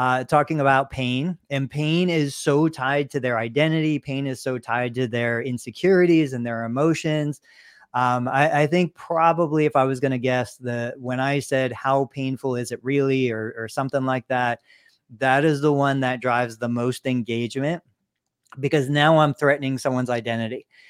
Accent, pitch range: American, 125-150 Hz